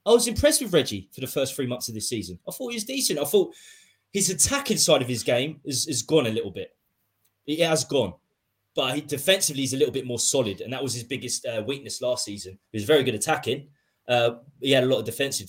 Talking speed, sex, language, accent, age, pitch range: 250 wpm, male, English, British, 20-39, 115-150 Hz